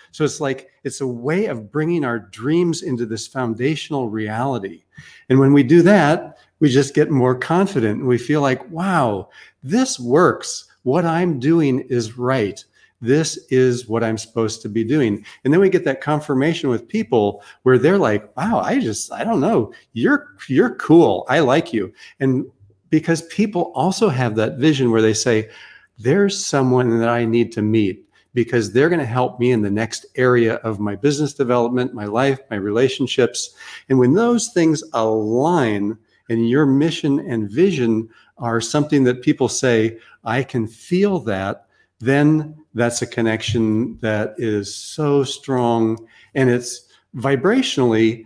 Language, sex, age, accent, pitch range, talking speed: English, male, 40-59, American, 115-150 Hz, 160 wpm